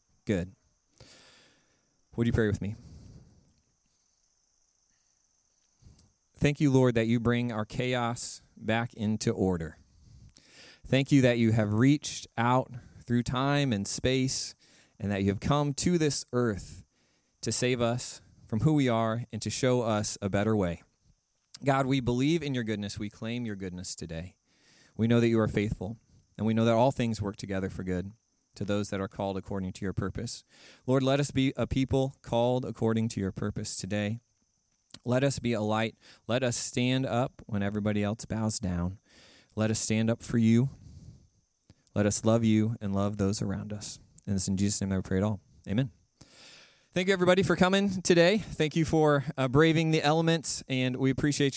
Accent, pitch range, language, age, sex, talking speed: American, 105-130 Hz, English, 30-49, male, 180 wpm